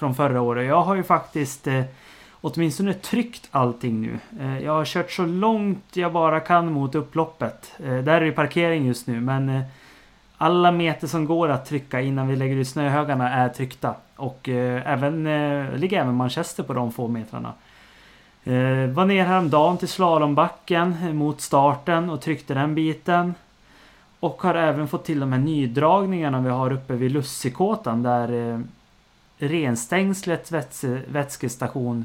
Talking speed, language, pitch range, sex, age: 165 wpm, Swedish, 125-165 Hz, male, 30-49